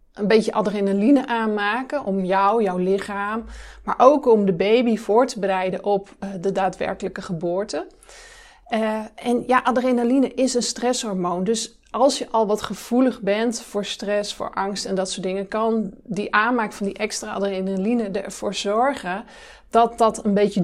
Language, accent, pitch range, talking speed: Dutch, Dutch, 205-250 Hz, 160 wpm